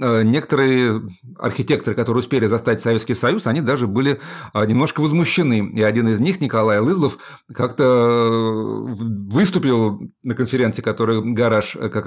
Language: Russian